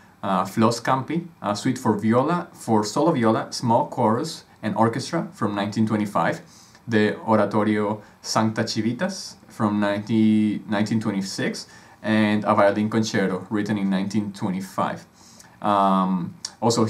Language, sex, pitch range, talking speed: English, male, 105-115 Hz, 115 wpm